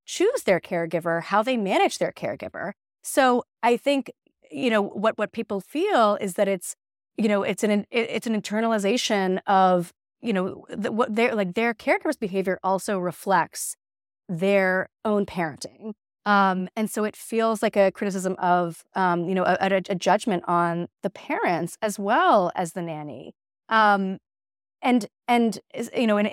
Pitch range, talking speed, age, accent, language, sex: 180-230 Hz, 165 wpm, 30-49, American, English, female